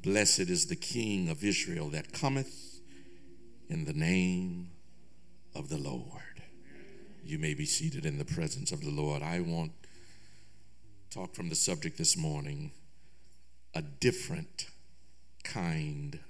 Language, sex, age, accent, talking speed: English, male, 60-79, American, 135 wpm